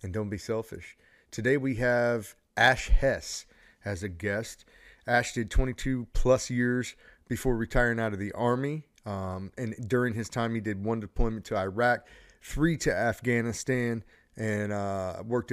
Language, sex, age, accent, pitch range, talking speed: English, male, 30-49, American, 110-125 Hz, 155 wpm